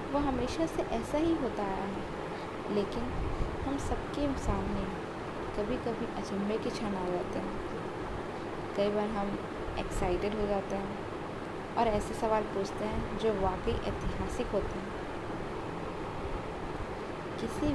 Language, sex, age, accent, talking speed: Hindi, female, 20-39, native, 130 wpm